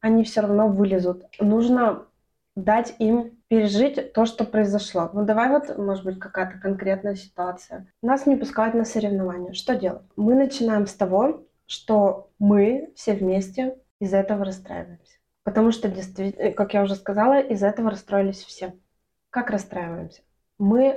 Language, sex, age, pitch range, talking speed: Russian, female, 20-39, 200-240 Hz, 145 wpm